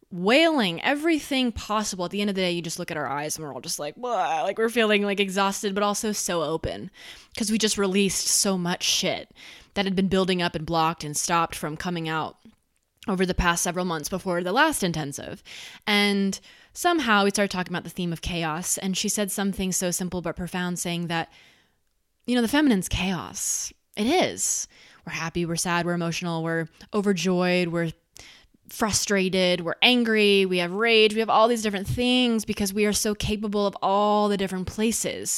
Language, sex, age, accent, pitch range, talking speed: English, female, 20-39, American, 175-225 Hz, 195 wpm